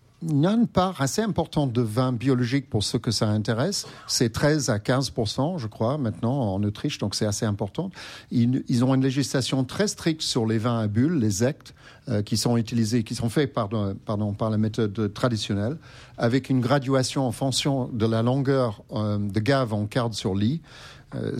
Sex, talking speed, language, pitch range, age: male, 200 wpm, French, 110-135 Hz, 50-69